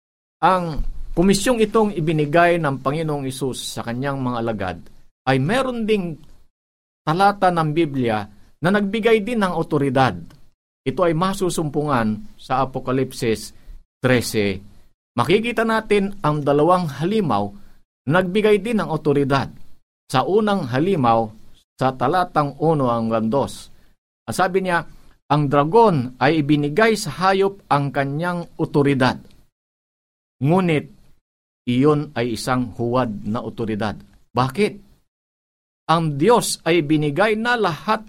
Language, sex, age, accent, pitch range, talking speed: Filipino, male, 50-69, native, 120-180 Hz, 110 wpm